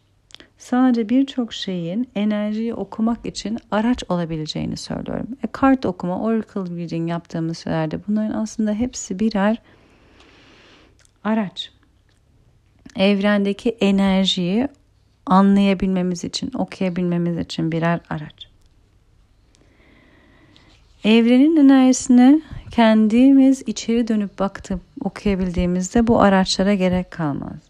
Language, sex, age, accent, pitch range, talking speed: Turkish, female, 40-59, native, 175-215 Hz, 85 wpm